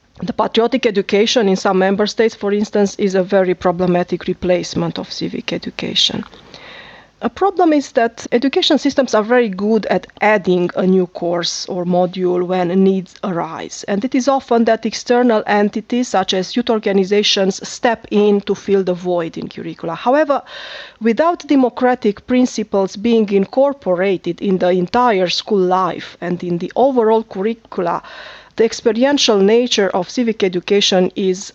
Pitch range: 185-230 Hz